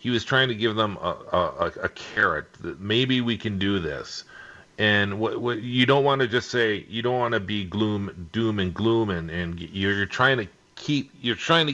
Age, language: 40-59, English